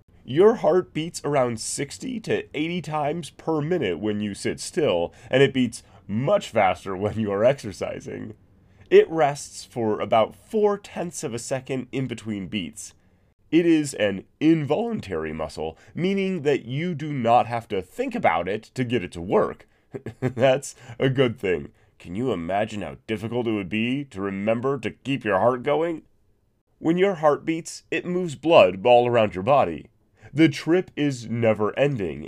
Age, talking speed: 30-49, 165 wpm